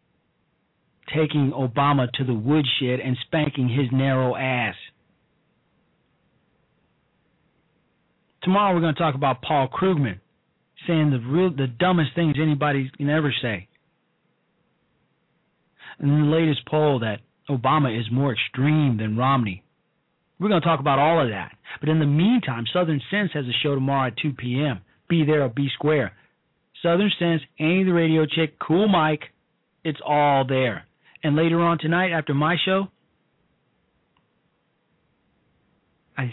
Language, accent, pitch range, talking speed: English, American, 130-165 Hz, 140 wpm